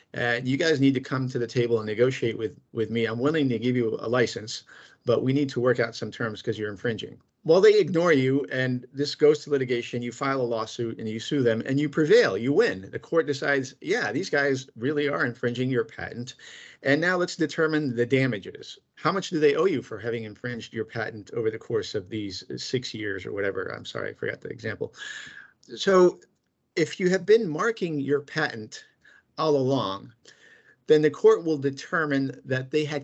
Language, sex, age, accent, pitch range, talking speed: English, male, 50-69, American, 120-155 Hz, 210 wpm